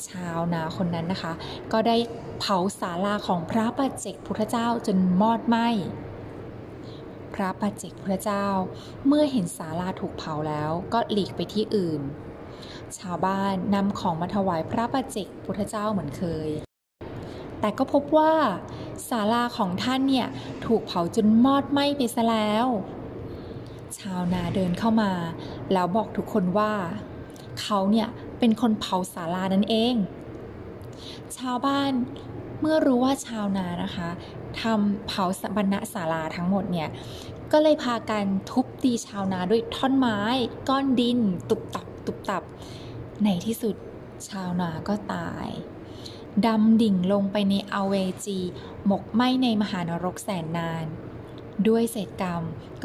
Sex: female